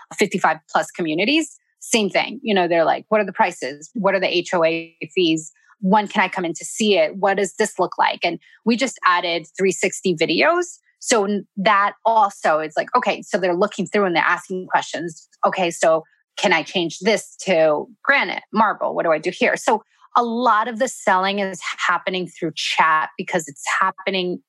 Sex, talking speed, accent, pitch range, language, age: female, 190 wpm, American, 180-230 Hz, English, 20-39